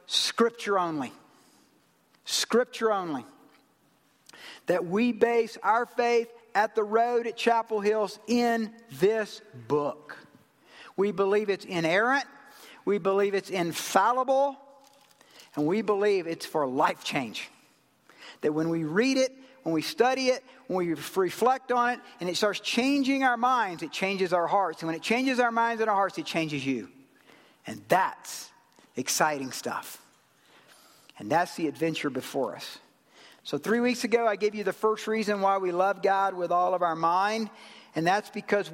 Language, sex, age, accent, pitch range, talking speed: English, male, 50-69, American, 175-225 Hz, 155 wpm